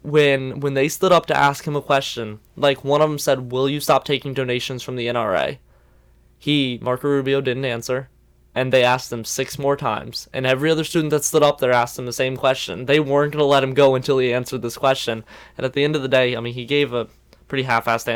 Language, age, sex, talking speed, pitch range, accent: English, 20-39, male, 245 wpm, 125-145 Hz, American